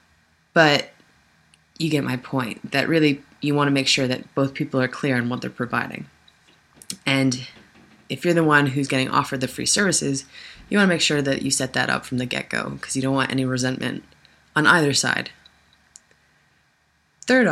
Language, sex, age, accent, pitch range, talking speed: English, female, 20-39, American, 125-145 Hz, 190 wpm